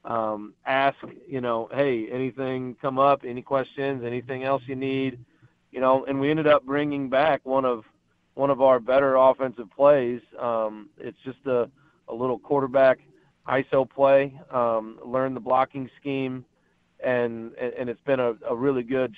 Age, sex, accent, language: 40-59, male, American, English